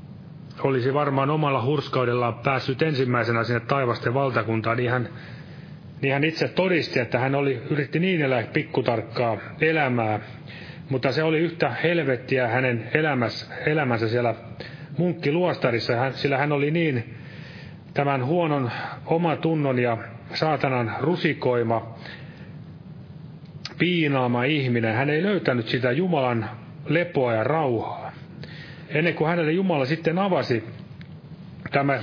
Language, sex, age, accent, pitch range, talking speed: Finnish, male, 30-49, native, 120-155 Hz, 115 wpm